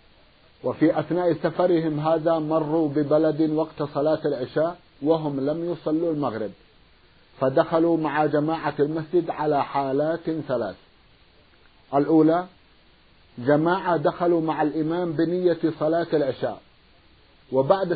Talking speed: 95 wpm